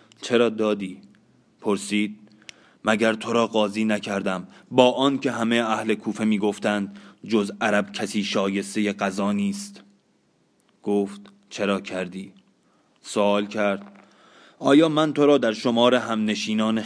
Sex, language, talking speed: male, Persian, 120 wpm